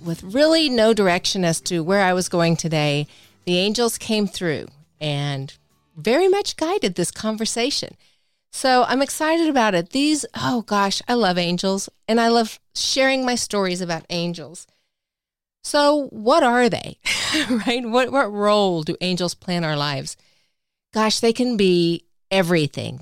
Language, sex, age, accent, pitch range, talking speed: English, female, 40-59, American, 170-225 Hz, 150 wpm